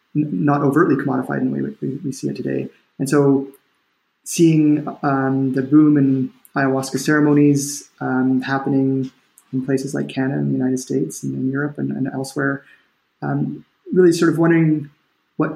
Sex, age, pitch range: male, 30-49, 135-155 Hz